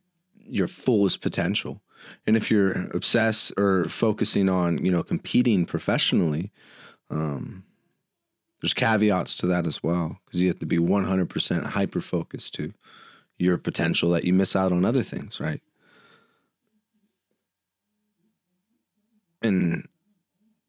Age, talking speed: 30-49, 115 wpm